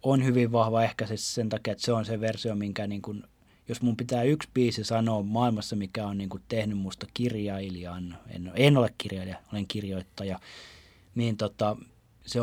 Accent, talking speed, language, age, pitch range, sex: native, 185 wpm, Finnish, 30-49, 95-120 Hz, male